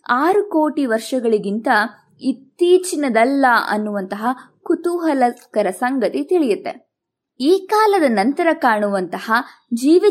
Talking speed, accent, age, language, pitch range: 75 wpm, native, 20-39, Kannada, 225-330 Hz